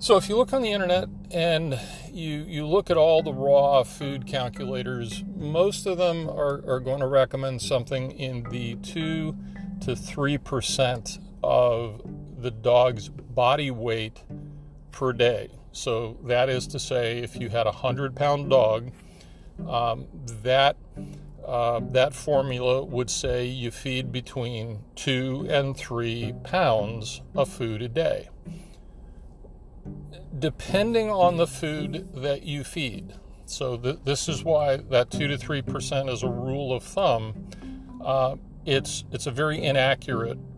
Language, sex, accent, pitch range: English, male, American, 120-155 Hz